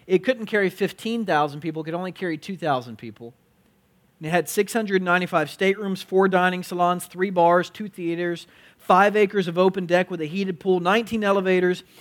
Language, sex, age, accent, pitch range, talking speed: English, male, 40-59, American, 125-180 Hz, 170 wpm